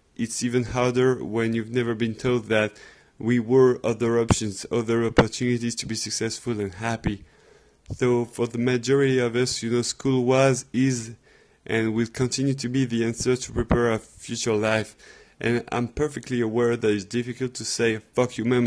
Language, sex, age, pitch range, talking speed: English, male, 20-39, 115-130 Hz, 175 wpm